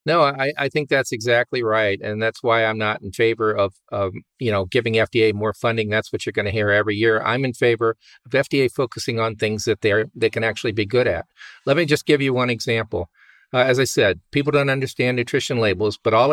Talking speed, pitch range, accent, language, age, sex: 235 wpm, 105-135 Hz, American, English, 50-69, male